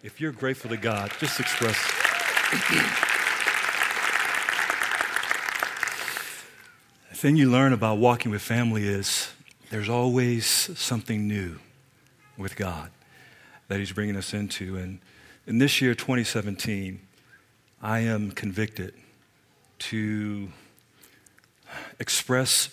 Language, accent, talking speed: English, American, 100 wpm